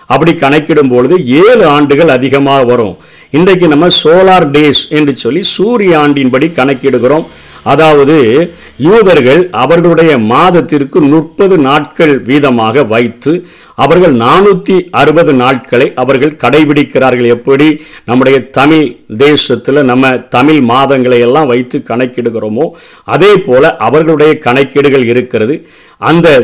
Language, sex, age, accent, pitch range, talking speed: Tamil, male, 50-69, native, 130-160 Hz, 105 wpm